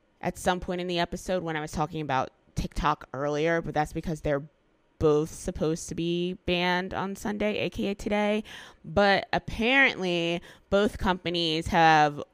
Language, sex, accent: English, female, American